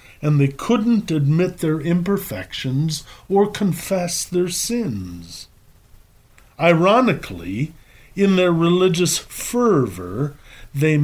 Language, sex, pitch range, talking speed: English, male, 120-180 Hz, 85 wpm